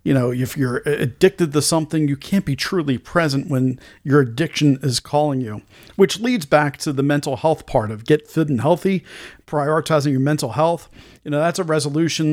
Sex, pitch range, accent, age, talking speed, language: male, 135-165 Hz, American, 40-59, 195 wpm, English